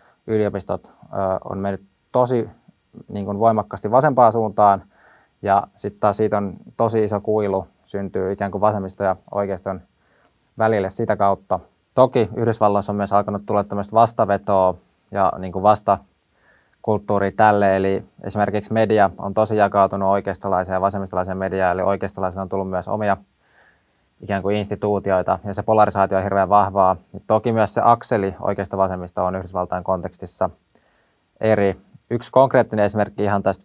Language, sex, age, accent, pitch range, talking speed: Finnish, male, 20-39, native, 95-105 Hz, 145 wpm